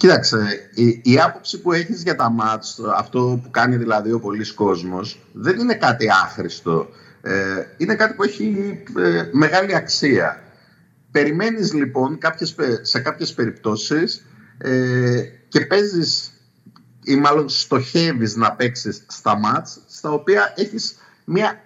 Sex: male